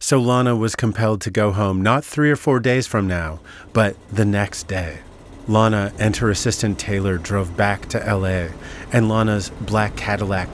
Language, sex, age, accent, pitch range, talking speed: English, male, 30-49, American, 95-115 Hz, 175 wpm